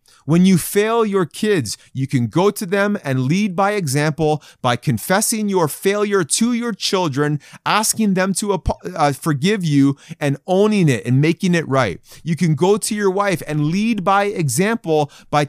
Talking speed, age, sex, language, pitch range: 170 wpm, 30-49, male, English, 135-195 Hz